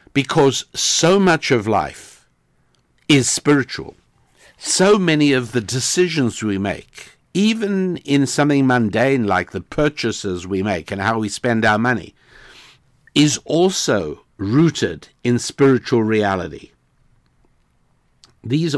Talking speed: 115 wpm